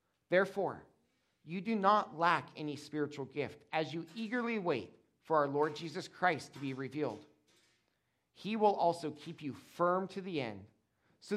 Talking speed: 160 wpm